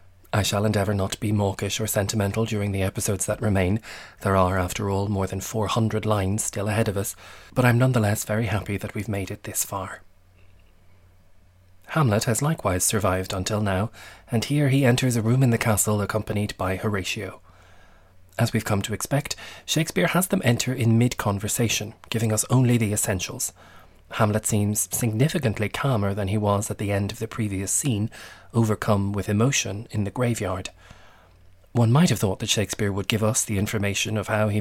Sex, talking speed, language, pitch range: male, 180 wpm, English, 95-115 Hz